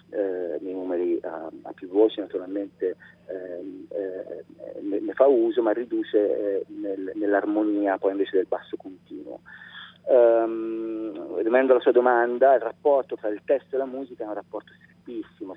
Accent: native